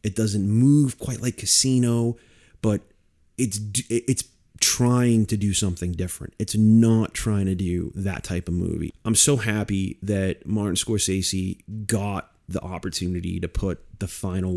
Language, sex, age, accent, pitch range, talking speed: English, male, 30-49, American, 90-110 Hz, 150 wpm